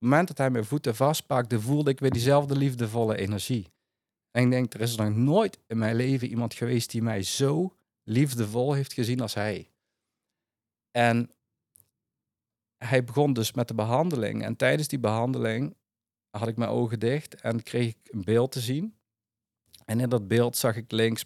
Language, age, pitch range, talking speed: Dutch, 50-69, 110-140 Hz, 180 wpm